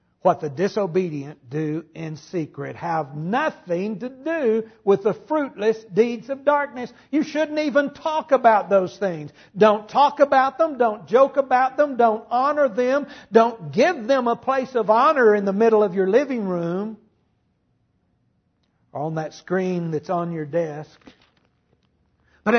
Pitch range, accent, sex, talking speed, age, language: 150-240 Hz, American, male, 150 wpm, 60-79, English